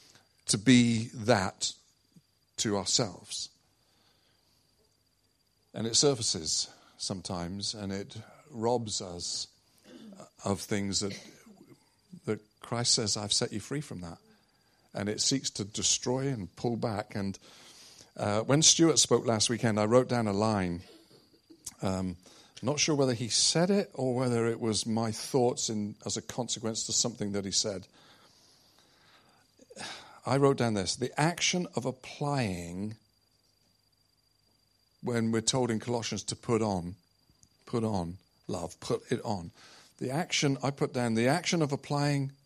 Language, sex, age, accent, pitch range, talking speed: English, male, 50-69, British, 105-130 Hz, 140 wpm